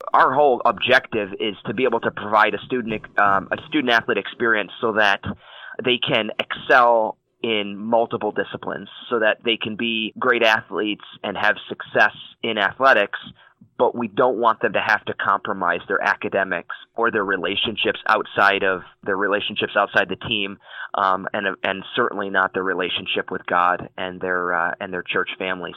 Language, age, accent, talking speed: English, 20-39, American, 170 wpm